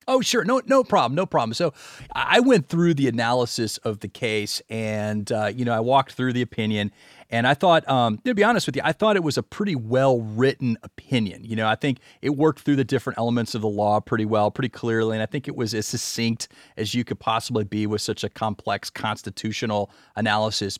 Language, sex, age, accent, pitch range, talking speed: English, male, 30-49, American, 110-140 Hz, 225 wpm